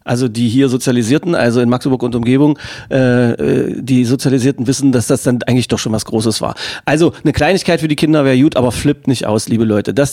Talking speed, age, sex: 225 wpm, 40-59, male